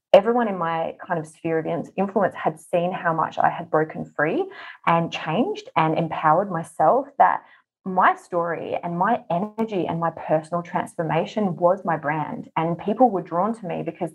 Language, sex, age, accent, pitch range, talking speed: English, female, 20-39, Australian, 165-190 Hz, 175 wpm